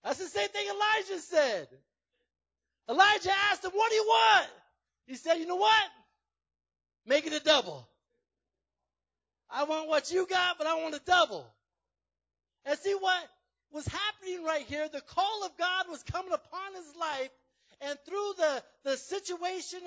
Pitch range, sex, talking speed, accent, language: 275-370 Hz, male, 160 wpm, American, English